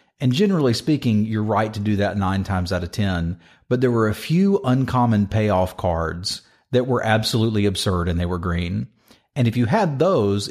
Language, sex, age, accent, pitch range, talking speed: English, male, 40-59, American, 95-120 Hz, 195 wpm